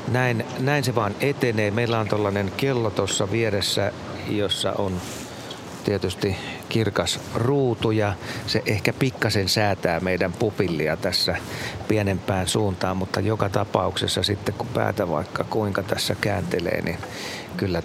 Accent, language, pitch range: native, Finnish, 95-115 Hz